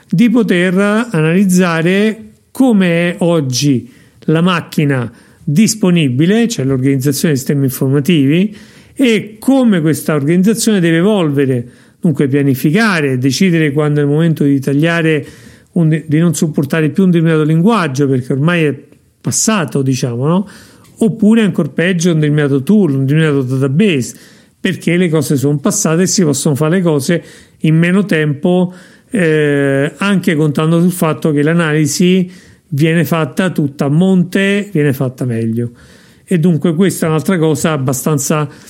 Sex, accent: male, native